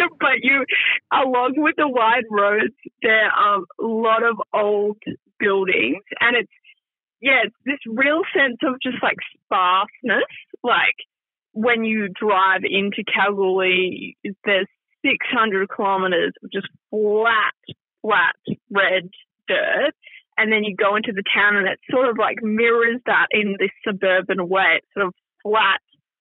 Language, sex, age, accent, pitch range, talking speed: English, female, 20-39, Australian, 190-240 Hz, 140 wpm